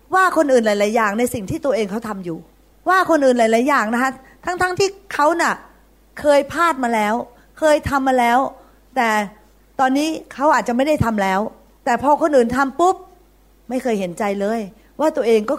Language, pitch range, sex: Thai, 215-290 Hz, female